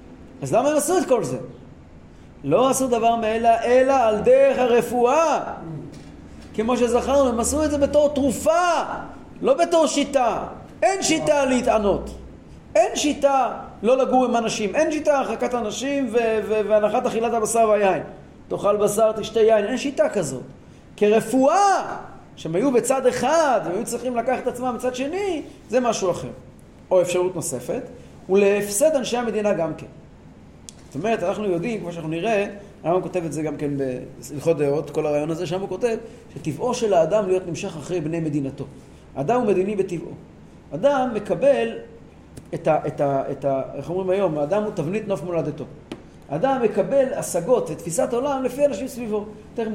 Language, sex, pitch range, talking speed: Hebrew, male, 180-255 Hz, 155 wpm